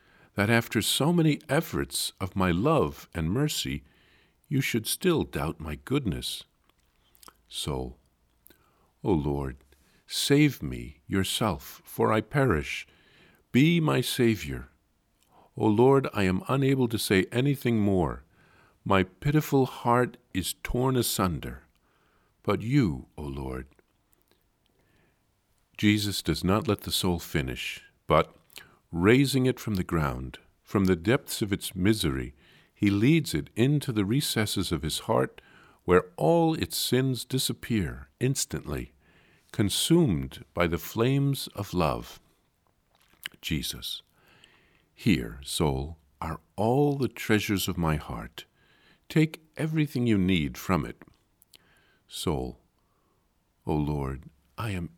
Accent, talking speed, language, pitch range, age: American, 120 wpm, English, 80-130 Hz, 50-69